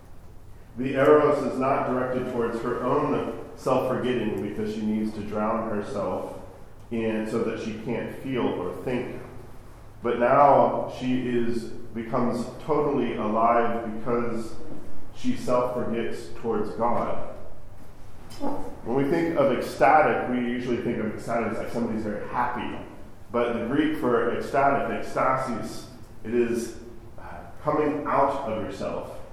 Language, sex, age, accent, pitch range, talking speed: English, male, 40-59, American, 110-125 Hz, 125 wpm